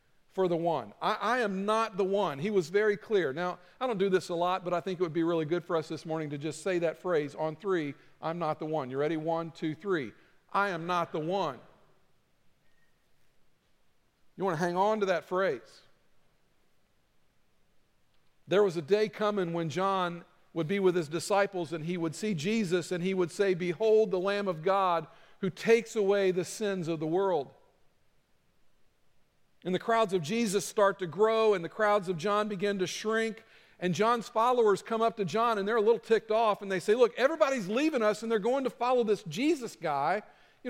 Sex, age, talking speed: male, 50-69, 205 wpm